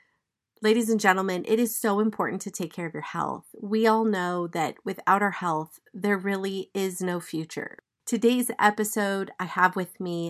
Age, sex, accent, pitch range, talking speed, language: 30-49, female, American, 180-220 Hz, 180 wpm, English